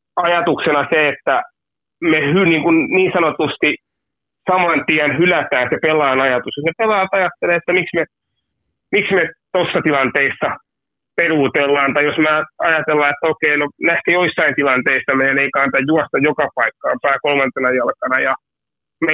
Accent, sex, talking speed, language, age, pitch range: native, male, 150 wpm, Finnish, 30-49, 145-190 Hz